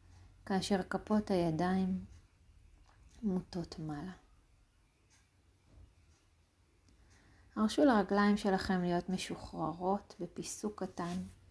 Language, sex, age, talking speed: Hebrew, female, 30-49, 65 wpm